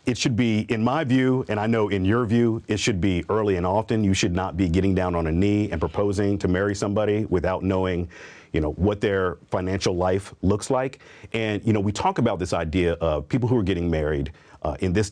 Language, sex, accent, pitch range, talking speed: English, male, American, 85-105 Hz, 235 wpm